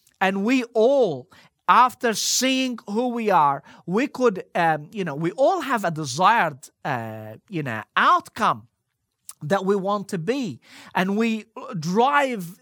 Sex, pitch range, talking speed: male, 185-245 Hz, 145 wpm